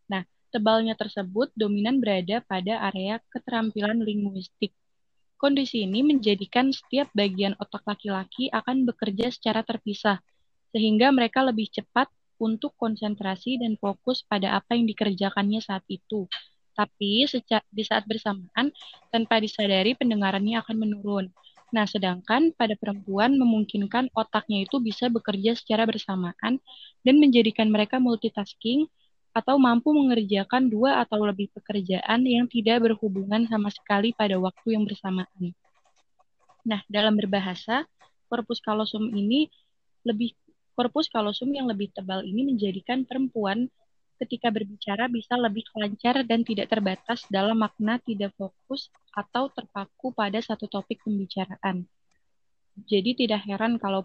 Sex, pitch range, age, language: female, 205-240 Hz, 20-39, Indonesian